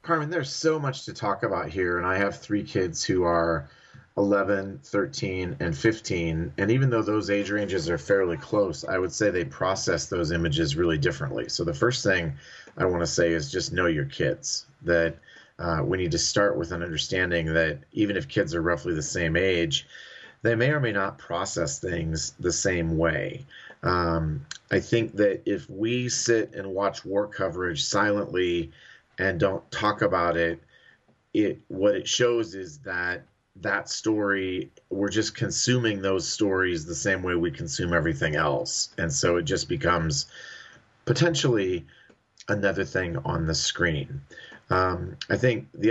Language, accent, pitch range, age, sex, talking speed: English, American, 85-115 Hz, 30-49, male, 170 wpm